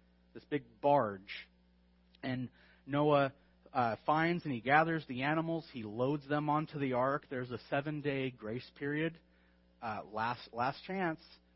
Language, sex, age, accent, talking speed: English, male, 40-59, American, 140 wpm